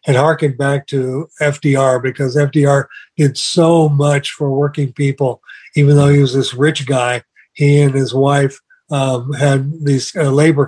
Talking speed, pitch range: 165 wpm, 135-155 Hz